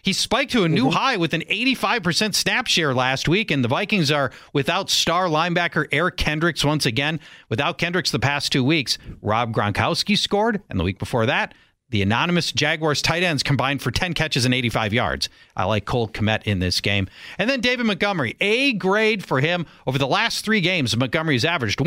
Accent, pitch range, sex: American, 115-170 Hz, male